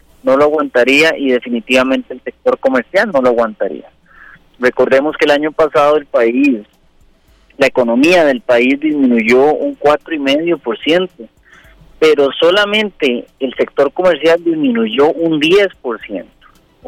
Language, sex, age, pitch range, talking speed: Spanish, male, 30-49, 125-165 Hz, 115 wpm